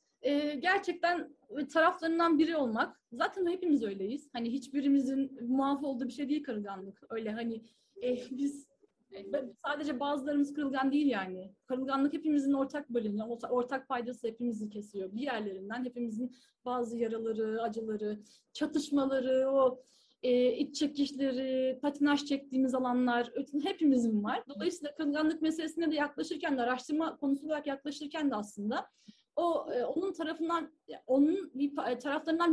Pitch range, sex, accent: 230-295 Hz, female, native